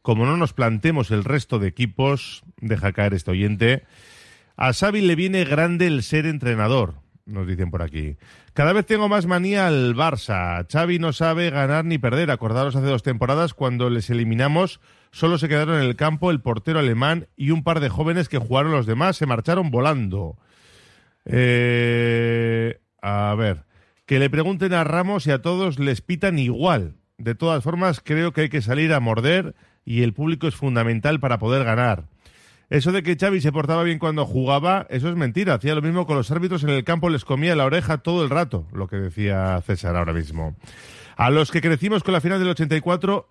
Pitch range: 115-170 Hz